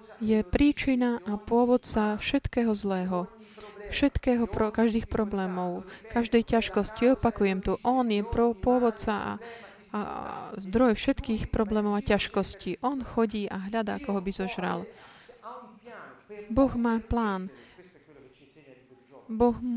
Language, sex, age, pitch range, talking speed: Slovak, female, 20-39, 190-230 Hz, 110 wpm